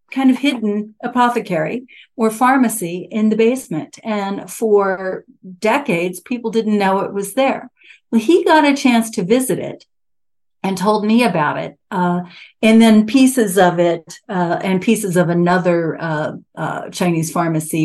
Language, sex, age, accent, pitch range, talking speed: English, female, 50-69, American, 170-225 Hz, 155 wpm